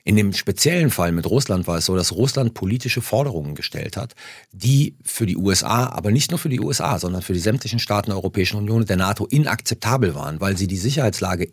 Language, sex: German, male